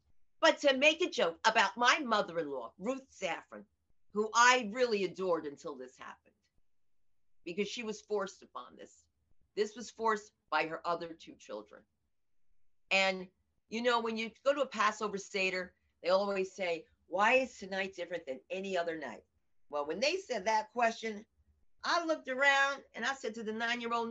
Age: 50-69